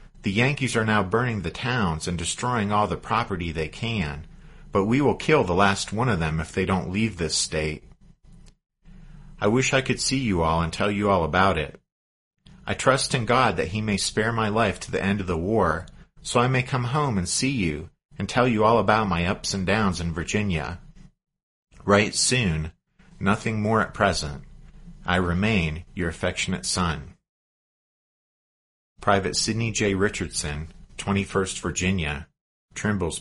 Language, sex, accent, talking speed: English, male, American, 170 wpm